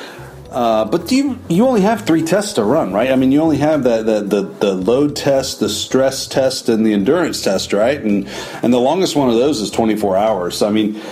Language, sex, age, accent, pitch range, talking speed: English, male, 40-59, American, 105-175 Hz, 240 wpm